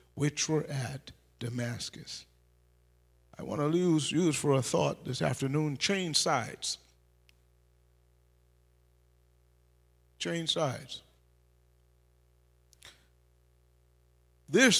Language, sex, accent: English, male, American